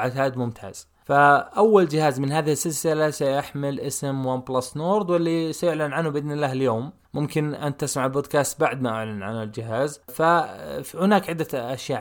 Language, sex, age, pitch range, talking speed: Arabic, male, 20-39, 125-150 Hz, 145 wpm